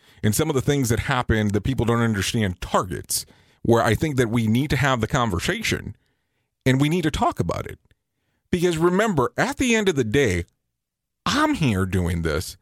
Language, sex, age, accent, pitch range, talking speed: English, male, 40-59, American, 105-145 Hz, 195 wpm